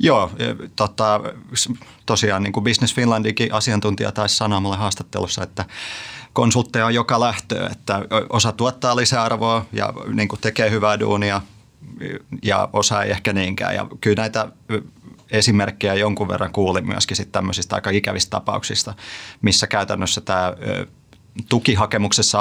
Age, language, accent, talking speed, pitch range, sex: 30-49, Finnish, native, 125 wpm, 100-115 Hz, male